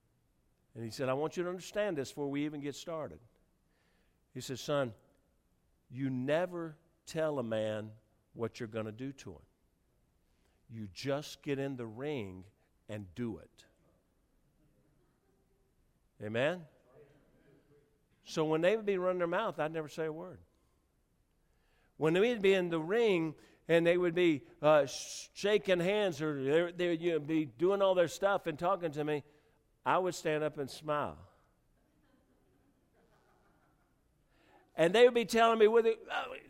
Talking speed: 155 wpm